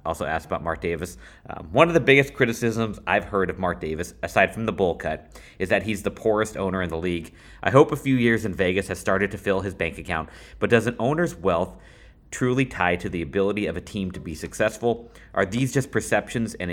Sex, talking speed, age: male, 235 wpm, 30-49